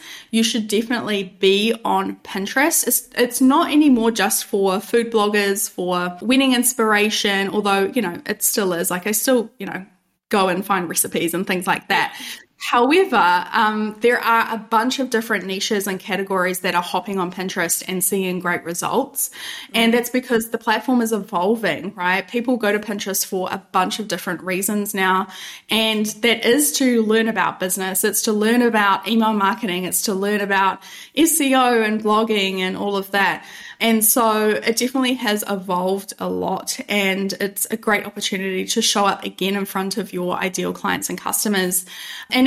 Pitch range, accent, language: 190-230 Hz, Australian, English